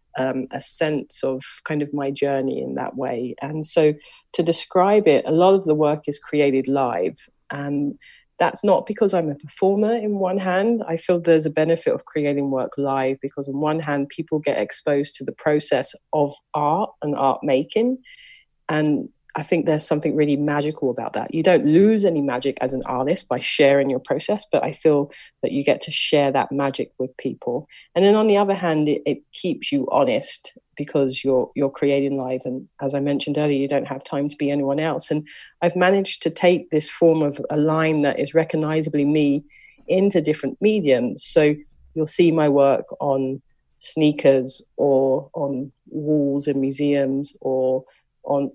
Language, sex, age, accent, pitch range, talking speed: English, female, 30-49, British, 140-165 Hz, 185 wpm